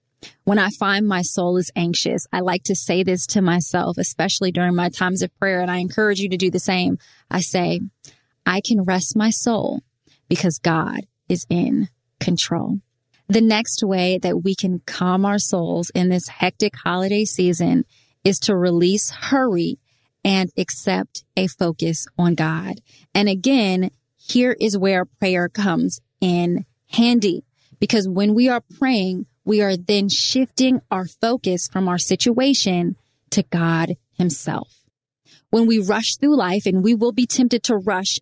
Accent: American